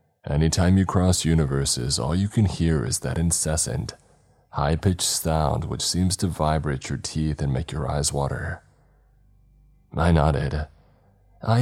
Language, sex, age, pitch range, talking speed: English, male, 30-49, 75-95 Hz, 145 wpm